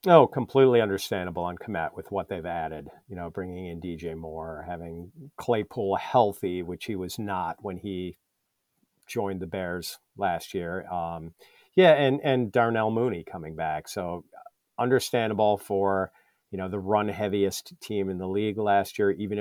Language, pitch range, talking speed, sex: English, 90-120 Hz, 160 wpm, male